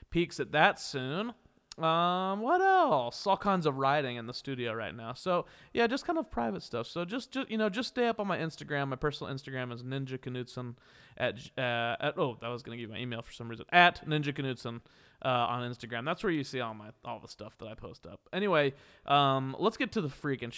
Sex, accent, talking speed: male, American, 225 wpm